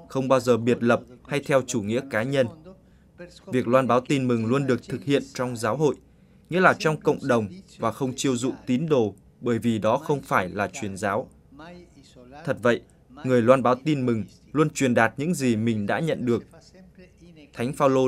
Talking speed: 200 wpm